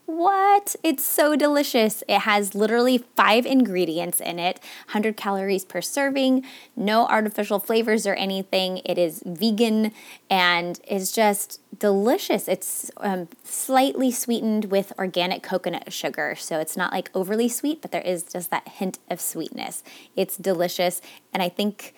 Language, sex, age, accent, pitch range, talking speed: English, female, 20-39, American, 185-245 Hz, 145 wpm